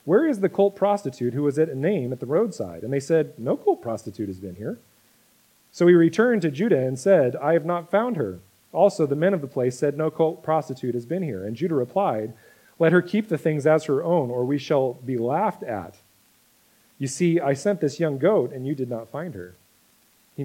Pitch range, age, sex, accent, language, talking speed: 125-180 Hz, 40-59, male, American, English, 230 wpm